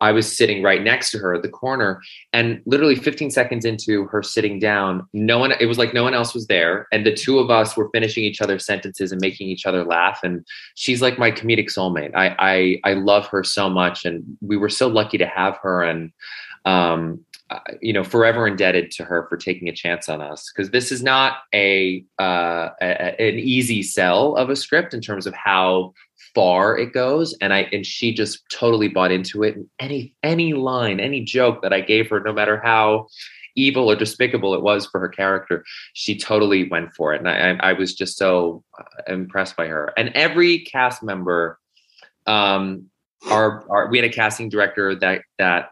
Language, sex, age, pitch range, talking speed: English, male, 20-39, 95-115 Hz, 205 wpm